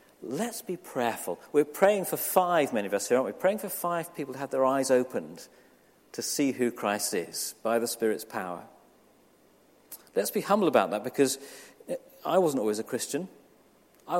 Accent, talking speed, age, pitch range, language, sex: British, 185 wpm, 40-59, 115-175 Hz, English, male